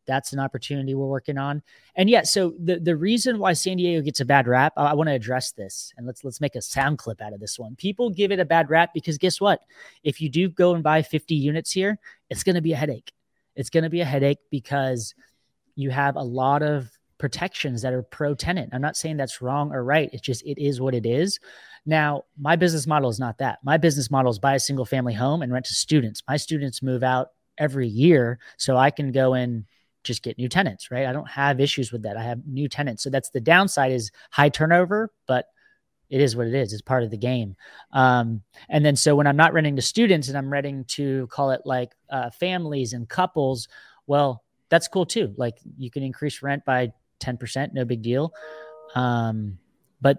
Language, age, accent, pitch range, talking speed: English, 30-49, American, 125-155 Hz, 230 wpm